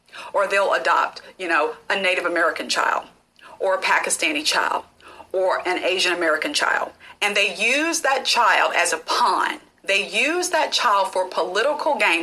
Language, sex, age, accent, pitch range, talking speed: English, female, 40-59, American, 215-330 Hz, 160 wpm